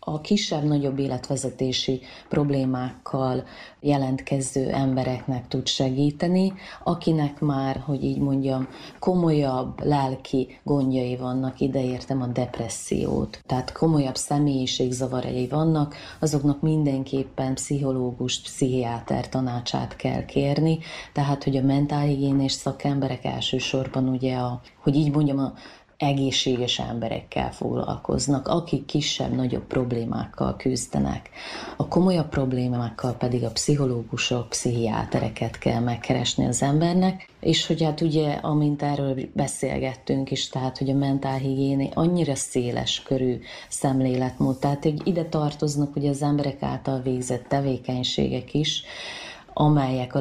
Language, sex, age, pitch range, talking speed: Hungarian, female, 30-49, 125-145 Hz, 105 wpm